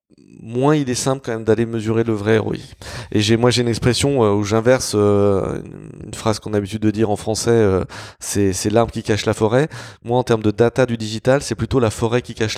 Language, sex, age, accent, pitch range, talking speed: French, male, 20-39, French, 100-120 Hz, 230 wpm